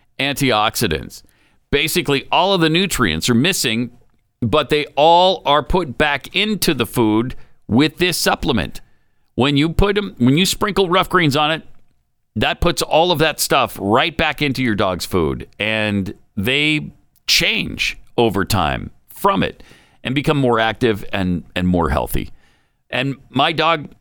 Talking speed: 150 wpm